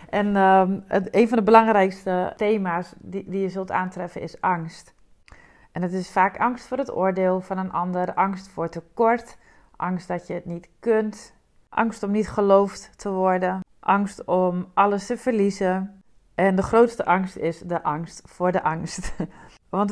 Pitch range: 185-225 Hz